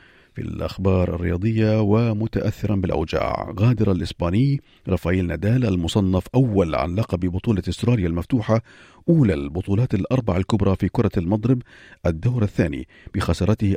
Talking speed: 115 wpm